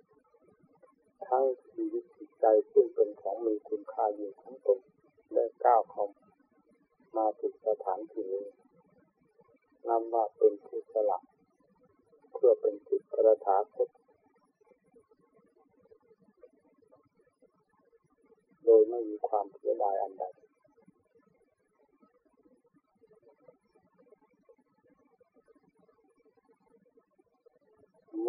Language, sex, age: Thai, male, 40-59